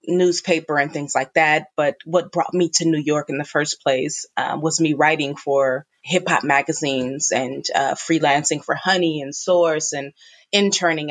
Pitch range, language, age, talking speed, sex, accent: 155-180 Hz, English, 20-39, 180 wpm, female, American